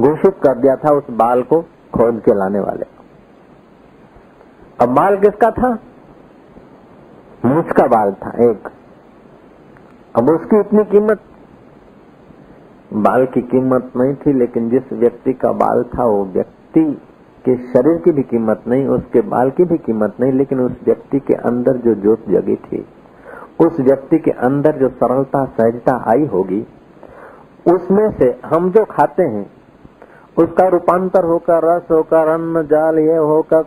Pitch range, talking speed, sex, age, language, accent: 135-195 Hz, 145 wpm, male, 50-69, Hindi, native